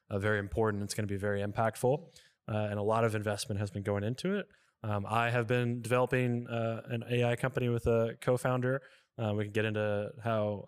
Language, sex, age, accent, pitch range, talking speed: English, male, 20-39, American, 100-115 Hz, 210 wpm